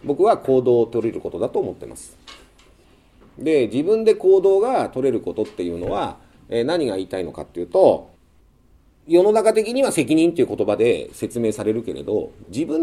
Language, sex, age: Japanese, male, 40-59